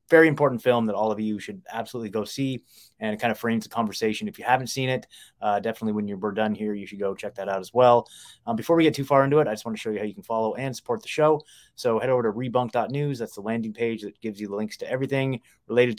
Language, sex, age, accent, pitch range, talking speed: English, male, 20-39, American, 105-130 Hz, 285 wpm